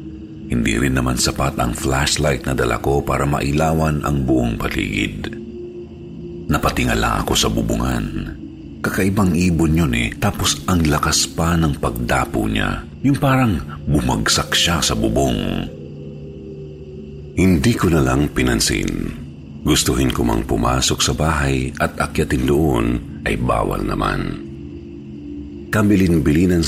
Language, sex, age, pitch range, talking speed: Filipino, male, 50-69, 70-85 Hz, 115 wpm